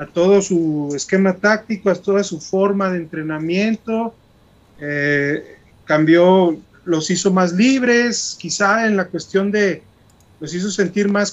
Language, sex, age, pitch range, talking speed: Spanish, male, 30-49, 155-200 Hz, 140 wpm